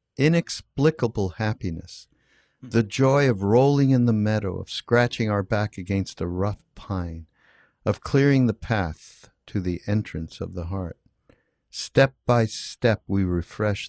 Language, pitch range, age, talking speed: English, 95-125 Hz, 60-79, 140 wpm